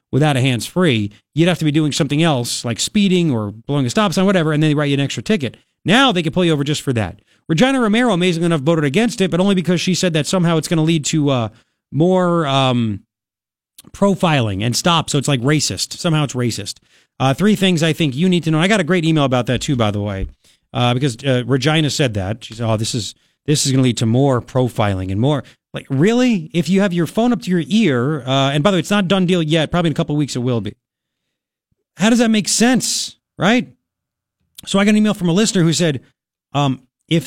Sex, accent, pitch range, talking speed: male, American, 130-185 Hz, 250 wpm